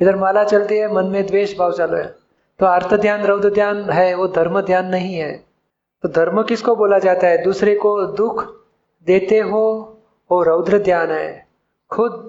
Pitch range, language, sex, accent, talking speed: 175-205 Hz, Hindi, male, native, 180 wpm